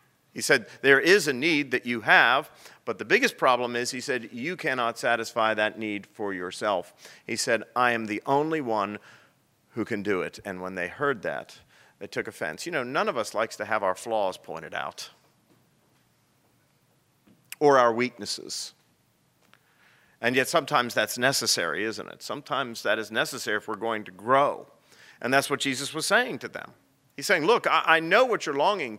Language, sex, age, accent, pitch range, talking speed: English, male, 40-59, American, 115-155 Hz, 185 wpm